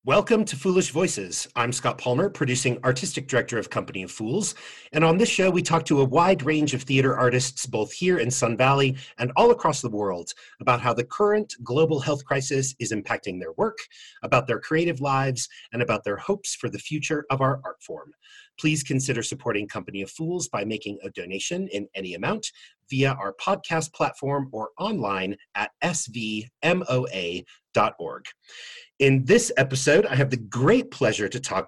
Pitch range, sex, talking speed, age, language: 120-170 Hz, male, 180 wpm, 40-59, English